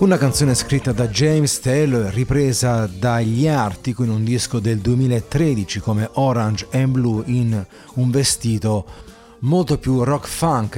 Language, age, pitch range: Italian, 30-49, 110-135 Hz